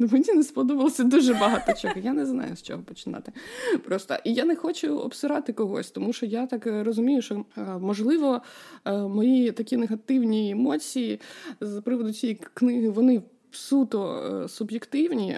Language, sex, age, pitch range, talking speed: Ukrainian, female, 20-39, 195-260 Hz, 145 wpm